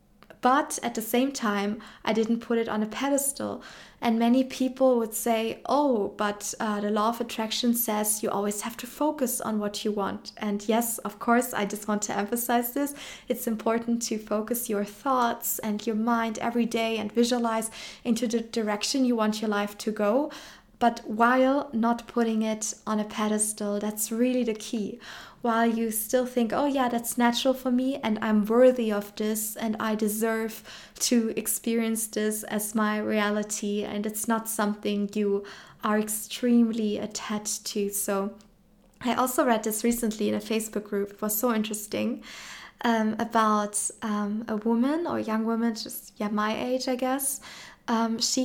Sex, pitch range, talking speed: female, 215-245 Hz, 175 wpm